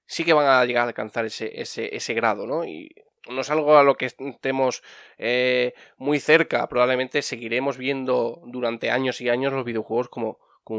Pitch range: 120-150 Hz